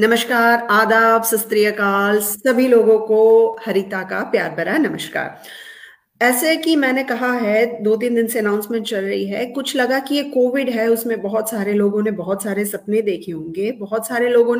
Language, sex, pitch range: Hindi, female, 205-250 Hz